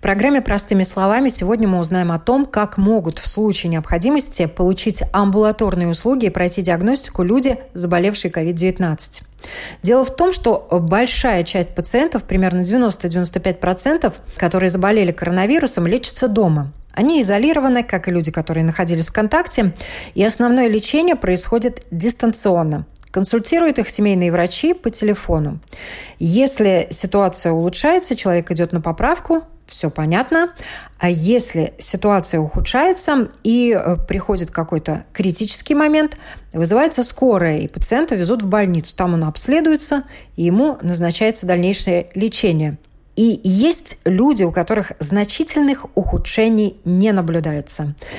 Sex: female